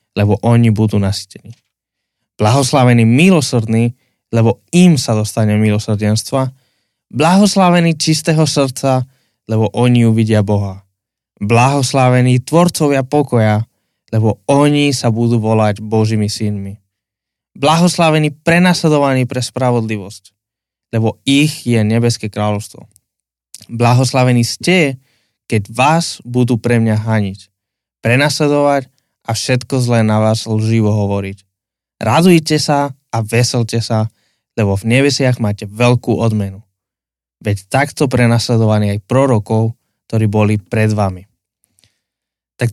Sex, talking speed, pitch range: male, 105 wpm, 105-130 Hz